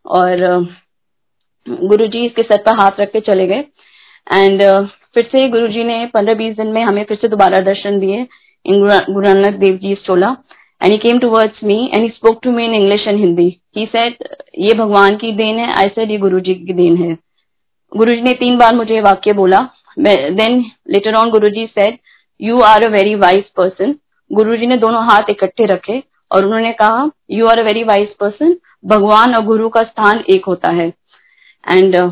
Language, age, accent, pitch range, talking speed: Hindi, 20-39, native, 195-230 Hz, 155 wpm